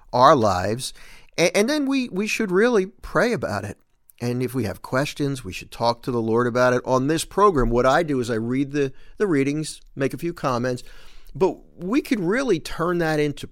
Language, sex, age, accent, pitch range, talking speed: English, male, 50-69, American, 120-165 Hz, 210 wpm